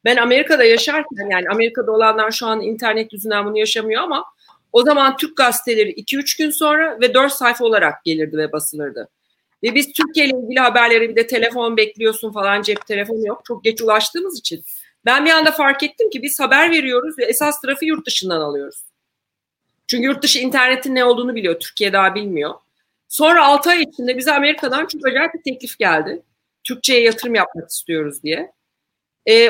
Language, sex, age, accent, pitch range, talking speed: Turkish, female, 40-59, native, 220-285 Hz, 175 wpm